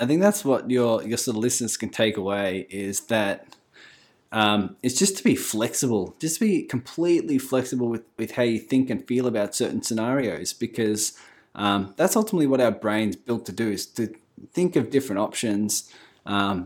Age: 20-39